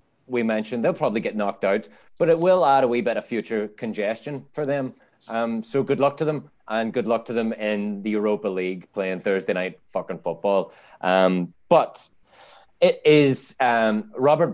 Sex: male